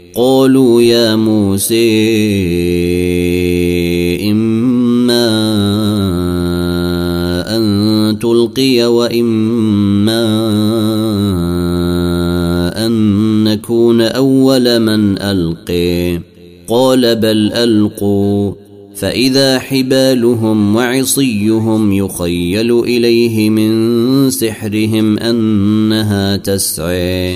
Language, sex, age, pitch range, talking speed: Arabic, male, 30-49, 90-115 Hz, 55 wpm